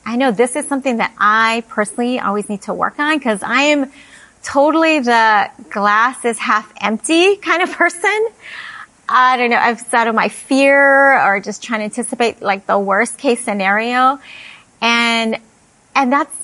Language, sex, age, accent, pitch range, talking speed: English, female, 30-49, American, 210-265 Hz, 165 wpm